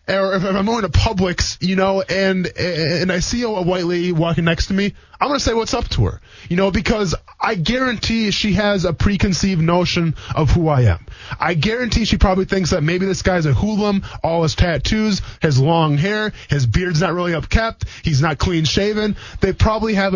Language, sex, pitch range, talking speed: English, male, 145-200 Hz, 210 wpm